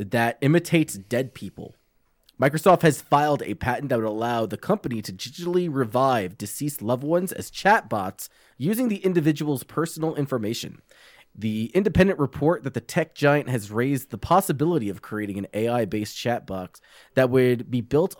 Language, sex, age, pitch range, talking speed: English, male, 20-39, 110-155 Hz, 155 wpm